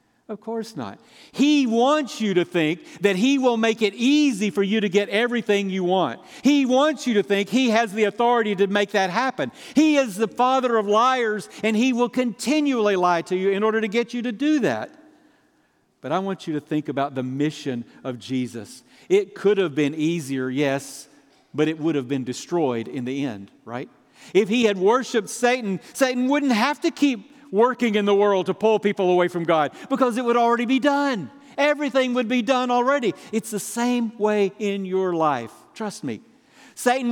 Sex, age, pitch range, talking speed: male, 50-69, 165-245 Hz, 200 wpm